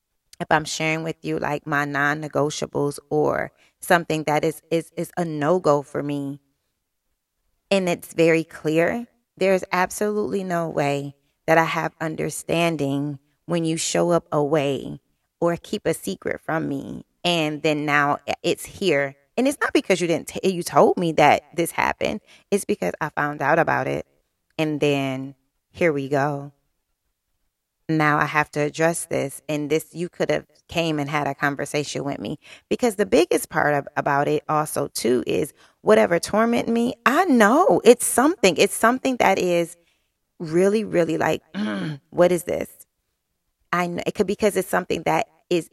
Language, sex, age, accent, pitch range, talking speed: English, female, 20-39, American, 145-175 Hz, 165 wpm